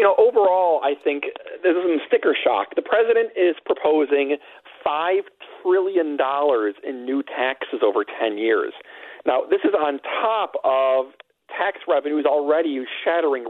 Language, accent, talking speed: English, American, 140 wpm